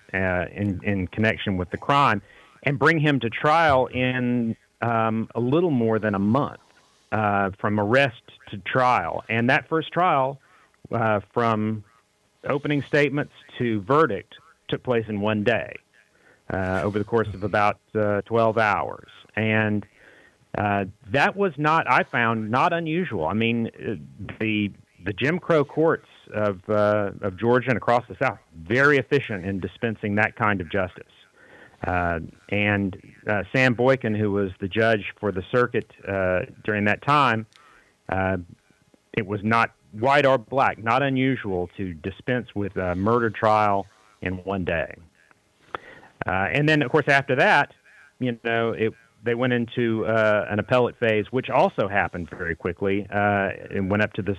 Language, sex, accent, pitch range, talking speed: English, male, American, 100-125 Hz, 160 wpm